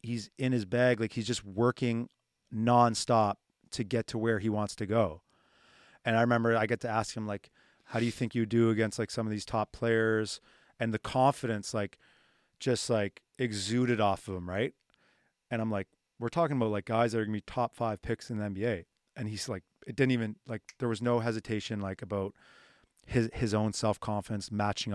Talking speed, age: 210 wpm, 30-49